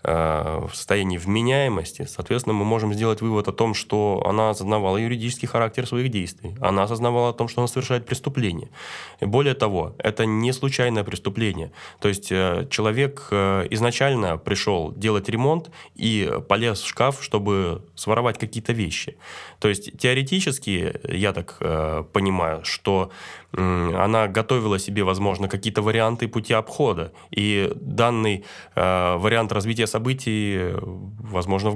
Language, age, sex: Russian, 20-39, male